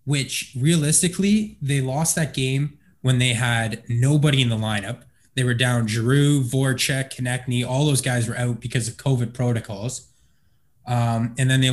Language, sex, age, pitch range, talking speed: English, male, 20-39, 115-135 Hz, 165 wpm